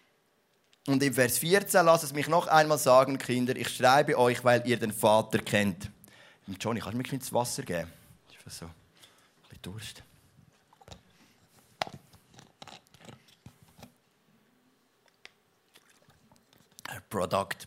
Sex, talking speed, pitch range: male, 115 wpm, 125-185 Hz